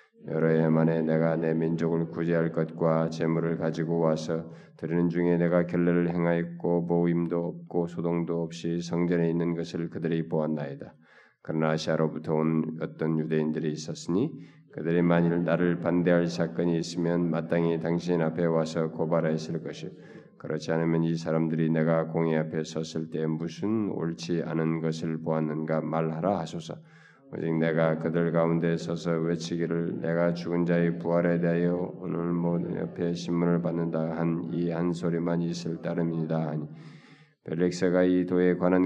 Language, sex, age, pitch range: Korean, male, 20-39, 80-85 Hz